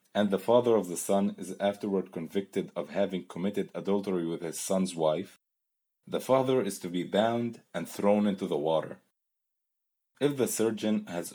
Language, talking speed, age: English, 170 wpm, 30-49